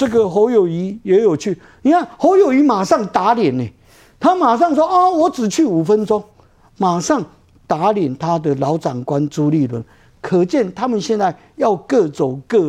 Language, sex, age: Chinese, male, 50-69